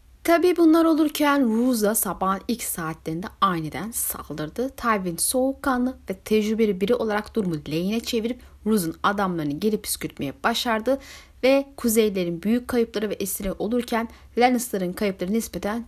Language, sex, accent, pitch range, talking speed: Turkish, female, native, 190-270 Hz, 125 wpm